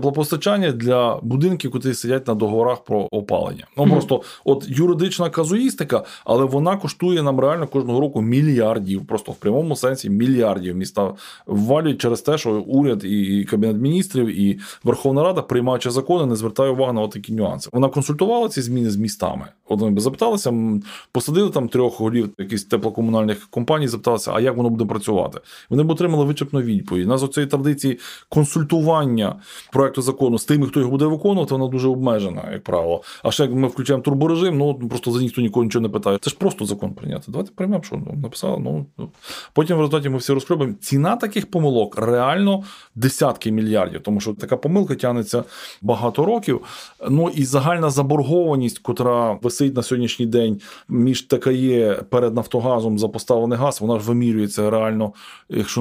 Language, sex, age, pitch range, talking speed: Ukrainian, male, 20-39, 115-145 Hz, 165 wpm